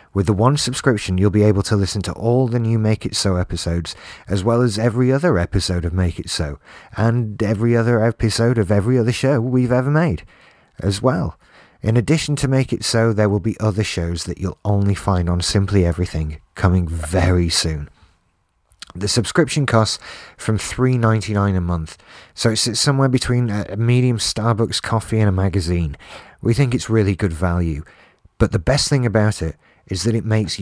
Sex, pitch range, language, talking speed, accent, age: male, 90-115 Hz, English, 190 wpm, British, 30-49